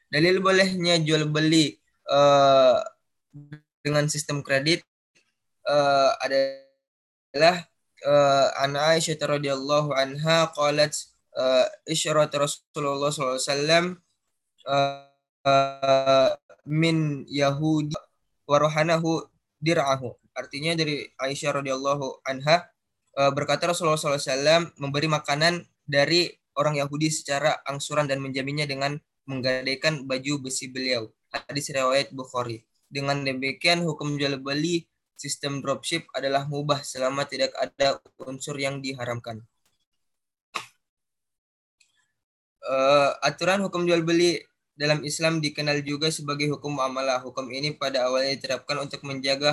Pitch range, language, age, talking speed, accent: 135-155 Hz, Indonesian, 10-29, 105 wpm, native